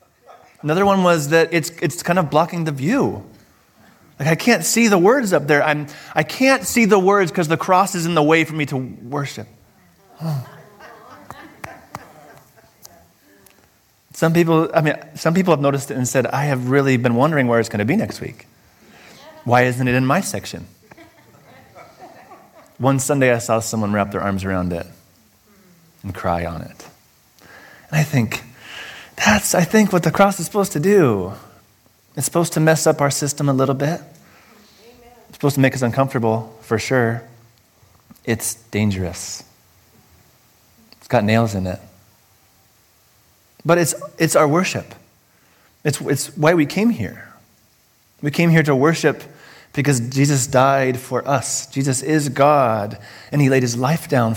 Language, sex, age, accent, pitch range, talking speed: English, male, 30-49, American, 115-165 Hz, 165 wpm